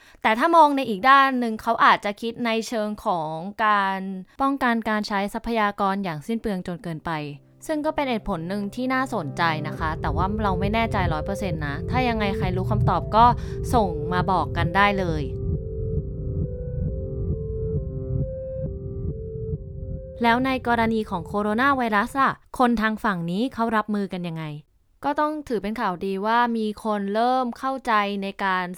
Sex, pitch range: female, 180-230 Hz